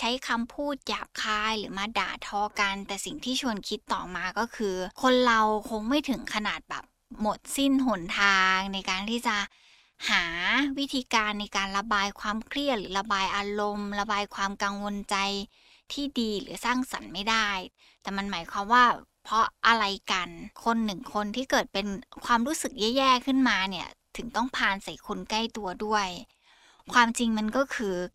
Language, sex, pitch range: Thai, female, 200-245 Hz